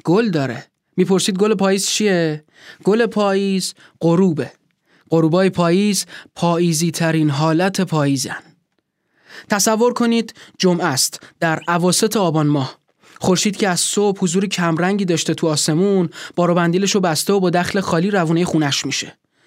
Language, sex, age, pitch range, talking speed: Persian, male, 20-39, 165-195 Hz, 135 wpm